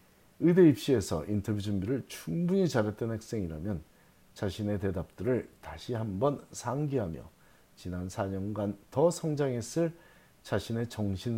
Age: 40-59